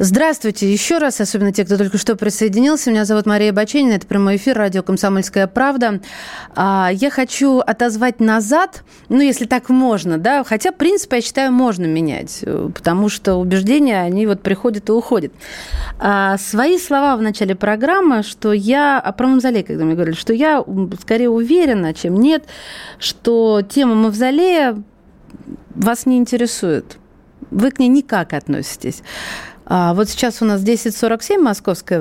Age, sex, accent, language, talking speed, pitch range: 30-49, female, native, Russian, 150 wpm, 195-255 Hz